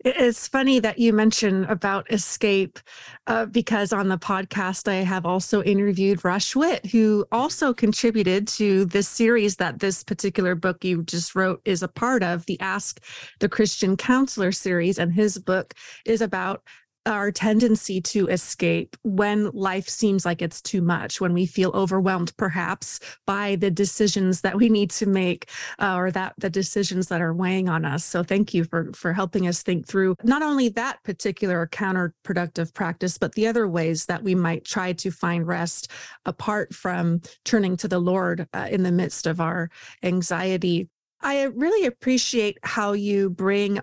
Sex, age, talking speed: female, 30-49, 170 wpm